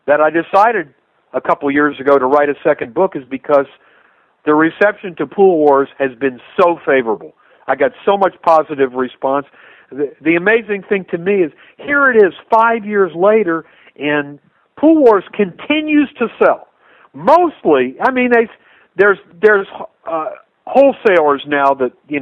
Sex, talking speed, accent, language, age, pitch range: male, 155 wpm, American, English, 50-69, 140-215 Hz